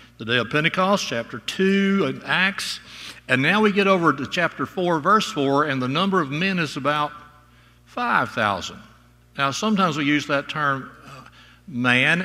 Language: English